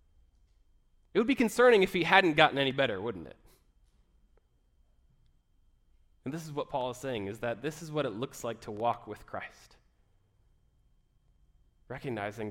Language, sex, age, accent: English, male, 30-49, American